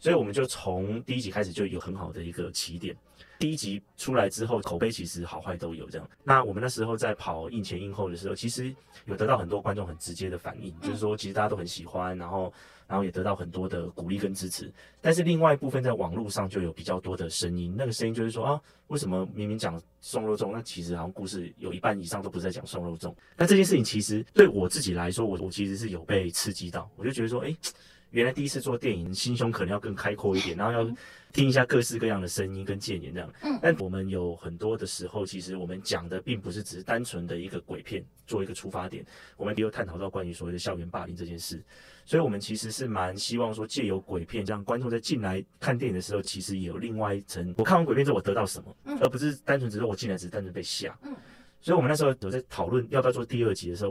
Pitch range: 90-115 Hz